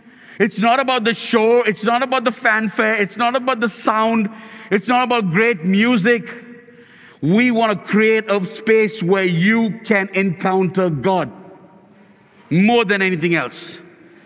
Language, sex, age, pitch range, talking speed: English, male, 50-69, 170-220 Hz, 145 wpm